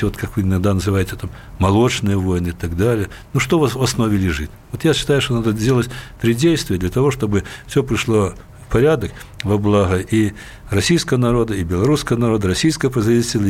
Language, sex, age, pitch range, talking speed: Russian, male, 60-79, 100-130 Hz, 190 wpm